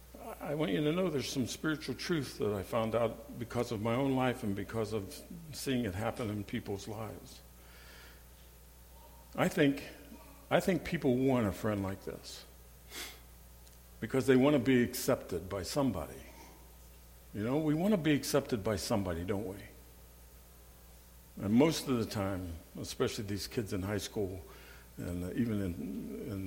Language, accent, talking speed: English, American, 160 wpm